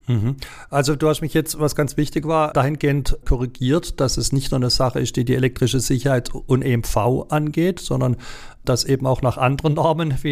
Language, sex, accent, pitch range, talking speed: German, male, German, 120-140 Hz, 190 wpm